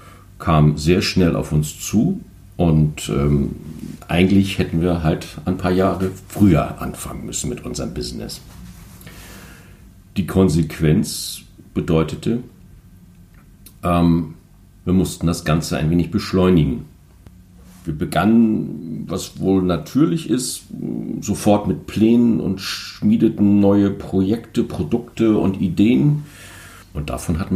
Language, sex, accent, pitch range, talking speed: German, male, German, 85-105 Hz, 110 wpm